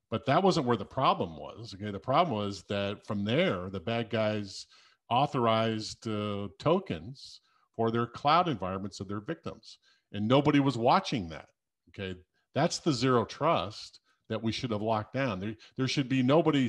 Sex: male